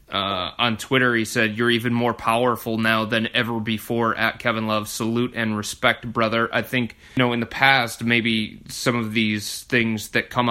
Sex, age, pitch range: male, 30-49, 110-125 Hz